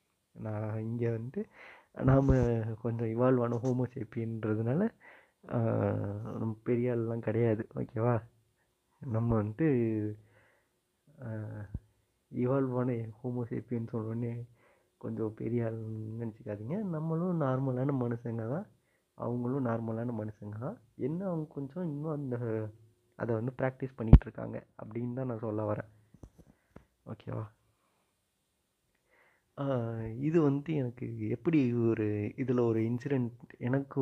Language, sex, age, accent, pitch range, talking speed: Tamil, male, 30-49, native, 110-135 Hz, 95 wpm